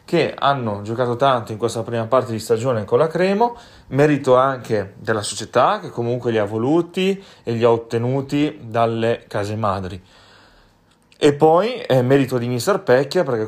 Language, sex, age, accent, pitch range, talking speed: Italian, male, 30-49, native, 105-125 Hz, 165 wpm